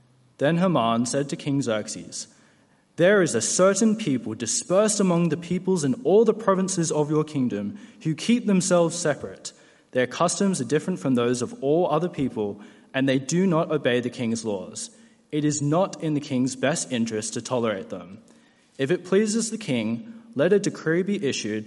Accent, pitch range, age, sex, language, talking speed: Australian, 115-165 Hz, 20-39, male, English, 180 wpm